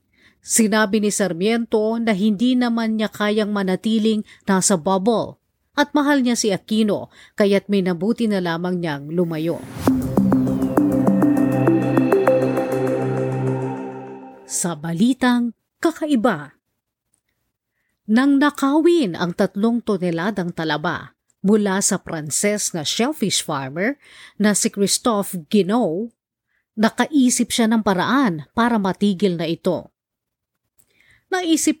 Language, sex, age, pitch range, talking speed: Filipino, female, 40-59, 170-235 Hz, 95 wpm